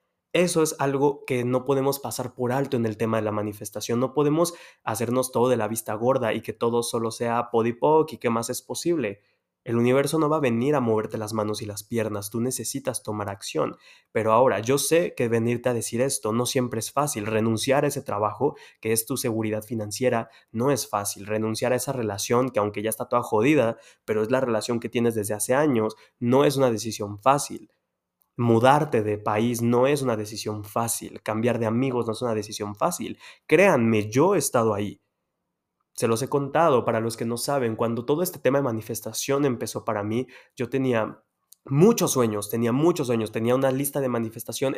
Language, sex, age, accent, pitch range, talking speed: Spanish, male, 20-39, Mexican, 110-135 Hz, 205 wpm